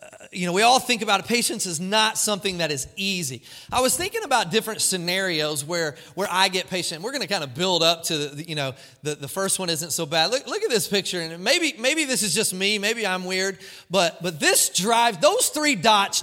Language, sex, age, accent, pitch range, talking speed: English, male, 30-49, American, 165-225 Hz, 240 wpm